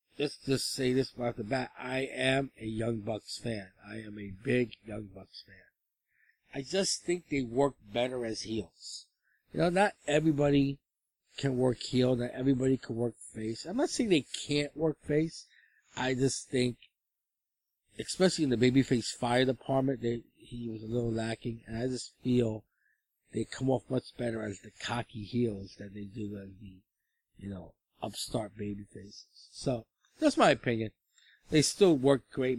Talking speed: 175 wpm